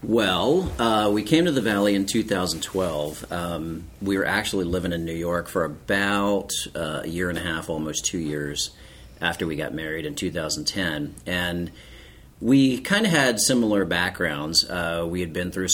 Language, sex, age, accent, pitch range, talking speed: English, male, 40-59, American, 75-95 Hz, 175 wpm